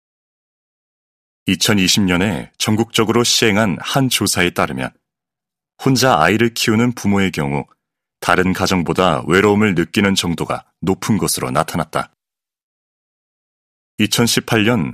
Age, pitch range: 30-49, 85-110 Hz